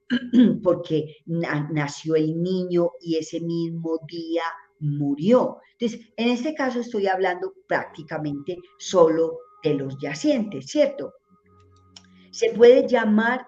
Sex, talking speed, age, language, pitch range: female, 105 wpm, 40-59, Spanish, 160-235 Hz